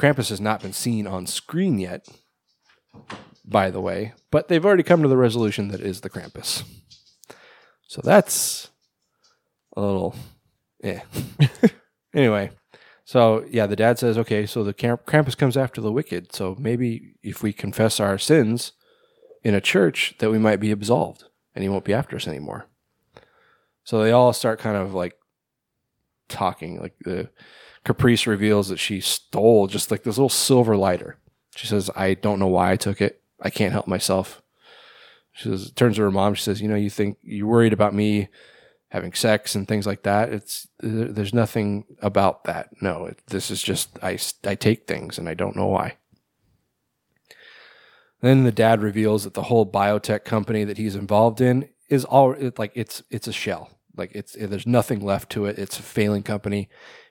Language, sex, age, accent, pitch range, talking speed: English, male, 20-39, American, 100-120 Hz, 180 wpm